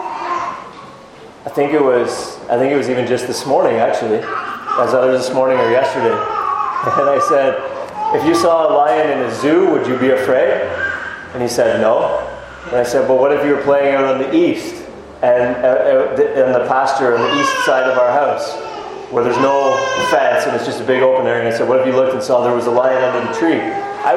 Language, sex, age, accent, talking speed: English, male, 30-49, American, 225 wpm